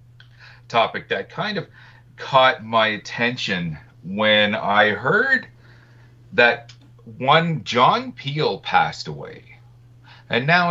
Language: English